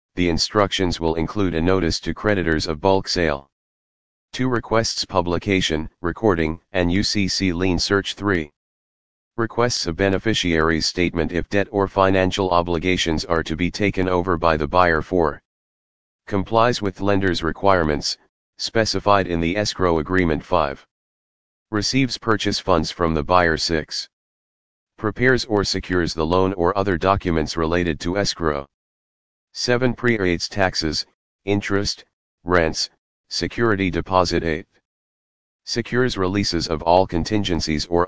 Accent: American